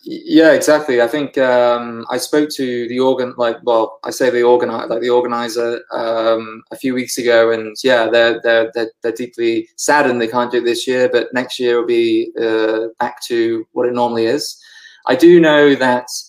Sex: male